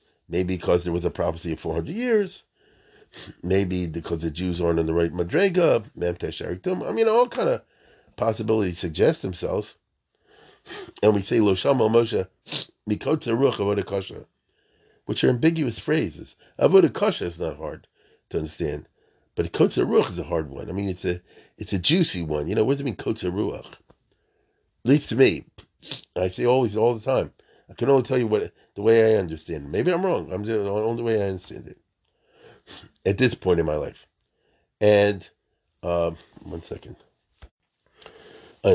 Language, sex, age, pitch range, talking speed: English, male, 40-59, 90-115 Hz, 155 wpm